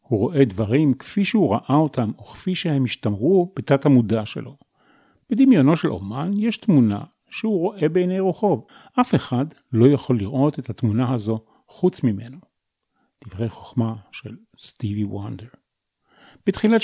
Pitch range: 115-160 Hz